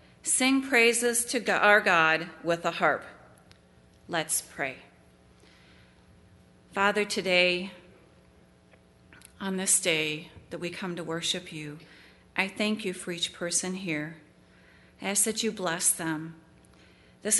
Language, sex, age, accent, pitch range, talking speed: English, female, 40-59, American, 150-190 Hz, 120 wpm